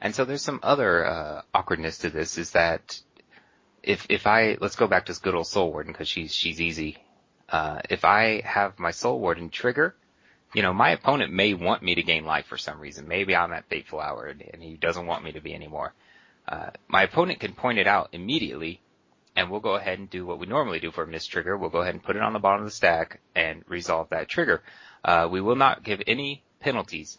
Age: 30-49